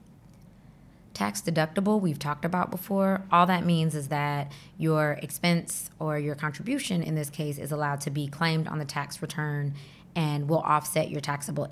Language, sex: English, female